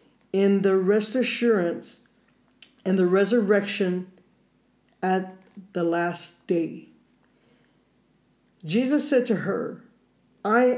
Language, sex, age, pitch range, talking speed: English, male, 40-59, 185-230 Hz, 90 wpm